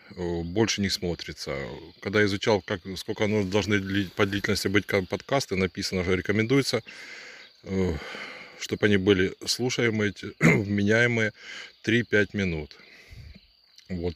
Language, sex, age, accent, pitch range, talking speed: Russian, male, 20-39, native, 90-105 Hz, 120 wpm